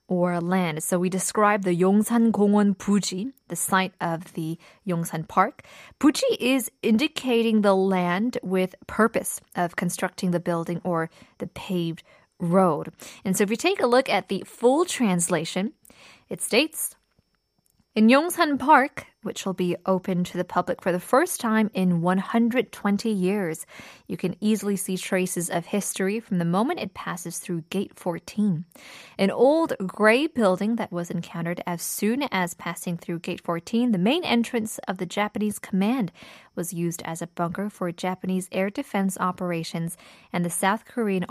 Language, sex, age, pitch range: Korean, female, 20-39, 175-220 Hz